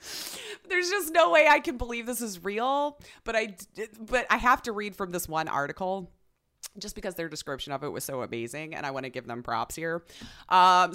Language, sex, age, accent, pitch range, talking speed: English, female, 30-49, American, 170-245 Hz, 215 wpm